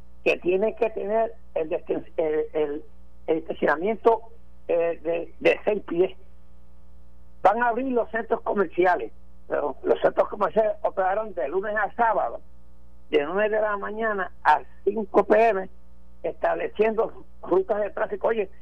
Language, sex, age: Spanish, male, 60-79